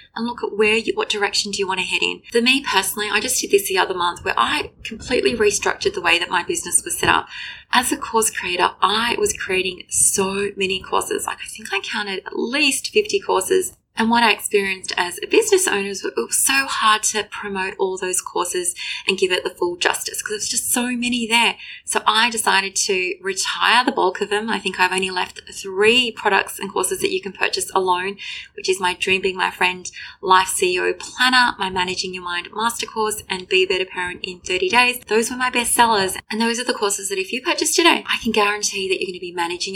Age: 20-39